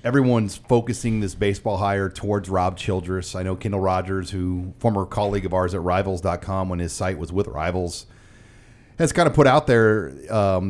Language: English